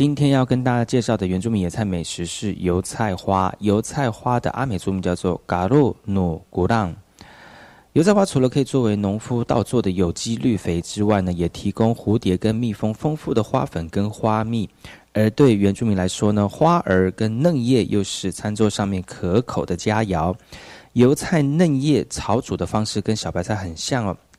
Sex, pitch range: male, 95-130 Hz